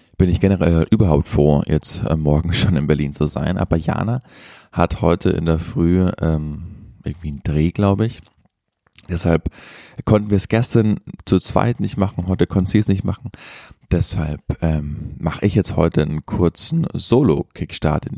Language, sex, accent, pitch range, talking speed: German, male, German, 80-100 Hz, 165 wpm